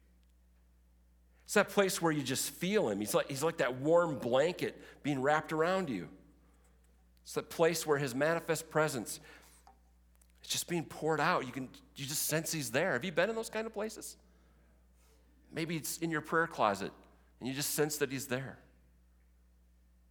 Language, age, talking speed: English, 40-59, 170 wpm